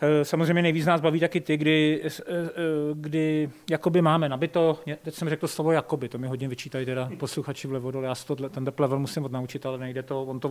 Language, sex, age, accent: Czech, male, 30-49, native